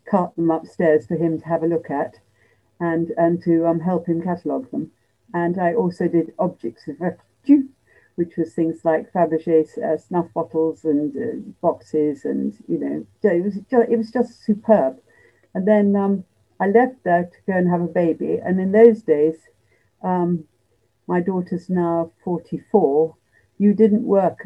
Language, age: English, 60-79